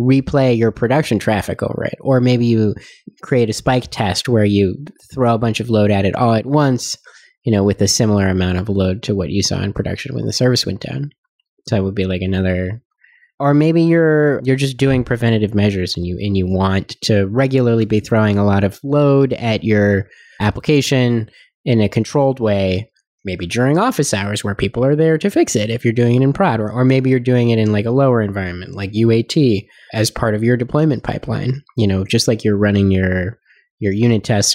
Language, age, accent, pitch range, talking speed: English, 20-39, American, 100-130 Hz, 215 wpm